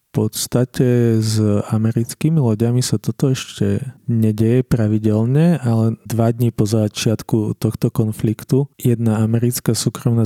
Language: Slovak